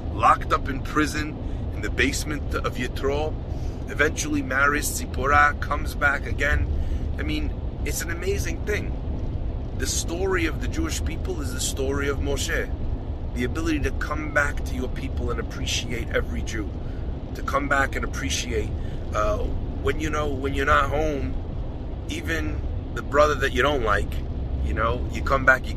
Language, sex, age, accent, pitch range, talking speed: English, male, 30-49, American, 80-95 Hz, 165 wpm